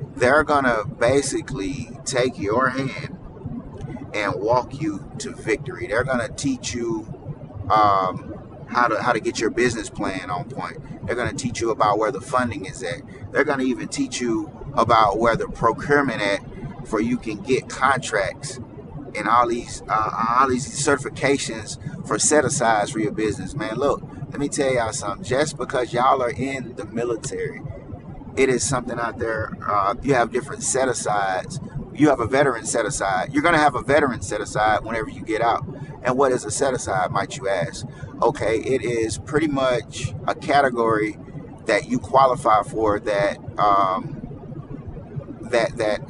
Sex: male